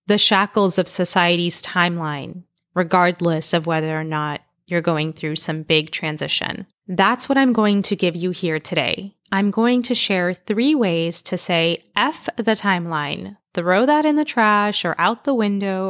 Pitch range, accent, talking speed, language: 175-225 Hz, American, 170 wpm, English